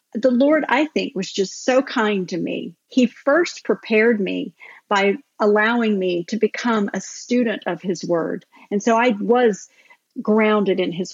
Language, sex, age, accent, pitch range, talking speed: English, female, 50-69, American, 190-245 Hz, 165 wpm